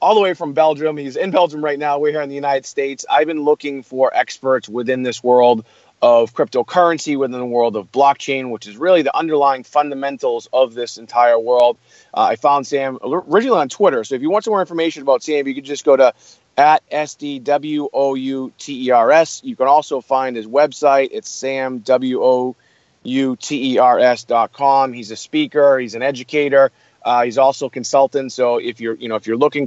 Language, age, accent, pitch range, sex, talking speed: English, 30-49, American, 125-150 Hz, male, 190 wpm